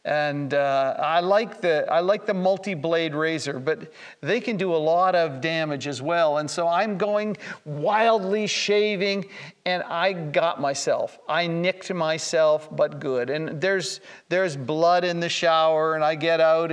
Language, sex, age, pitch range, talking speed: English, male, 50-69, 150-195 Hz, 170 wpm